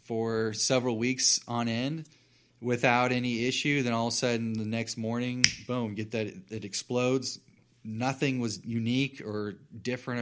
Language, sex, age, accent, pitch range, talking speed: English, male, 20-39, American, 105-125 Hz, 155 wpm